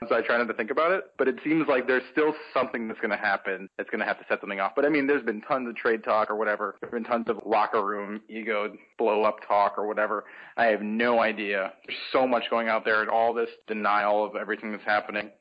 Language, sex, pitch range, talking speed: English, male, 110-140 Hz, 260 wpm